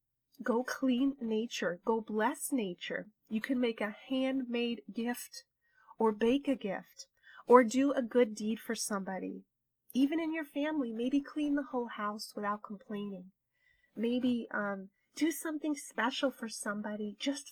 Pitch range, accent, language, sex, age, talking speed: 215-270 Hz, American, English, female, 30-49, 145 wpm